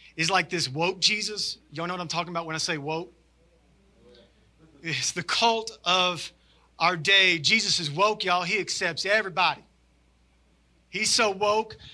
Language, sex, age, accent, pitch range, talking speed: English, male, 30-49, American, 140-190 Hz, 155 wpm